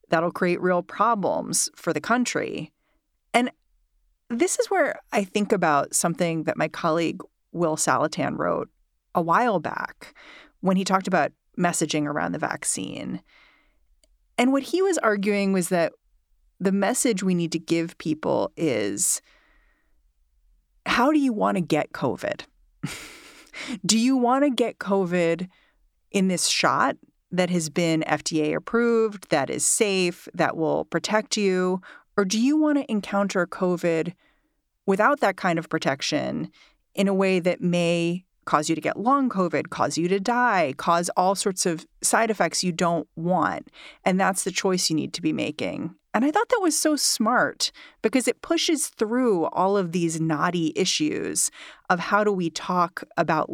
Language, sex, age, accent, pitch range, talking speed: English, female, 30-49, American, 170-230 Hz, 160 wpm